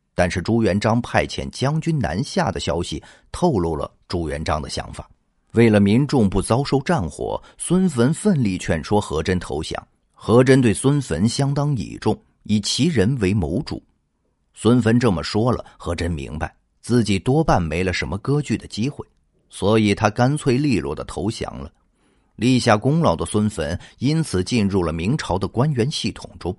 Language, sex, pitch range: Chinese, male, 95-130 Hz